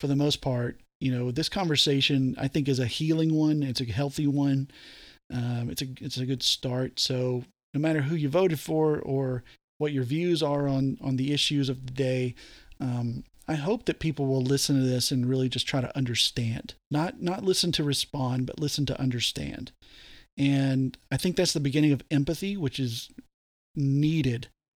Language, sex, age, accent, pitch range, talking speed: English, male, 40-59, American, 130-150 Hz, 190 wpm